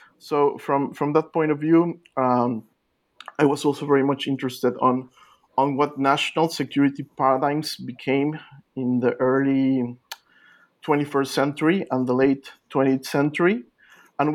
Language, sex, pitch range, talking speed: English, male, 125-150 Hz, 135 wpm